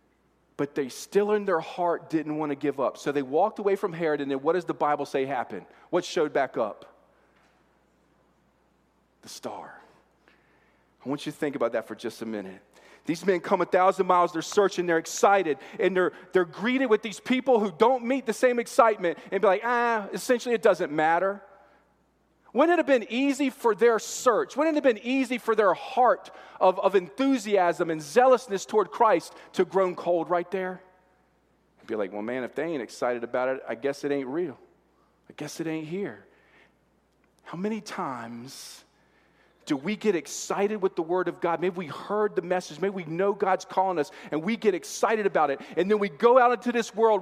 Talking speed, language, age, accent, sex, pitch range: 200 wpm, English, 40-59, American, male, 175-230 Hz